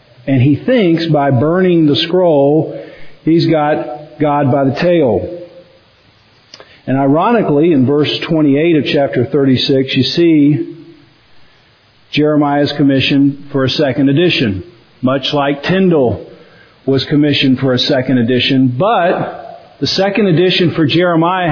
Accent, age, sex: American, 50-69, male